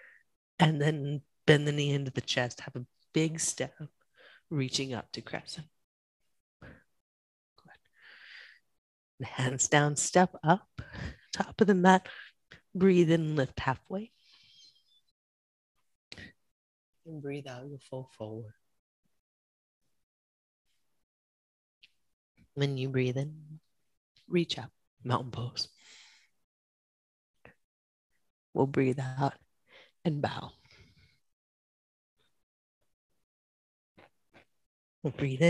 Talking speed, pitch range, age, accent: 80 wpm, 125-175 Hz, 30-49, American